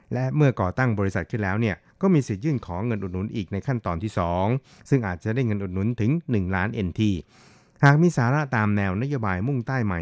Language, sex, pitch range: Thai, male, 95-125 Hz